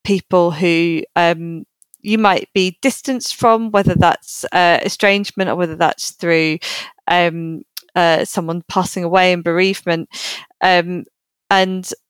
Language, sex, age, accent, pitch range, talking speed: English, female, 20-39, British, 170-195 Hz, 125 wpm